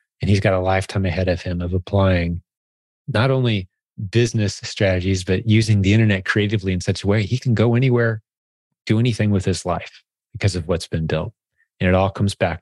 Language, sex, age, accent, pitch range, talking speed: English, male, 30-49, American, 90-105 Hz, 200 wpm